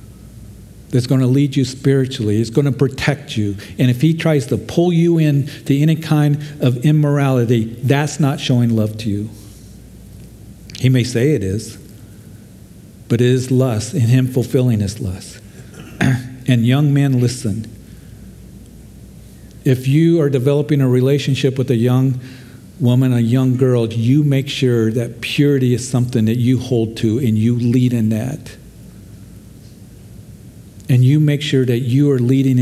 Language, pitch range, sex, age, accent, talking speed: English, 115-145 Hz, male, 50-69, American, 155 wpm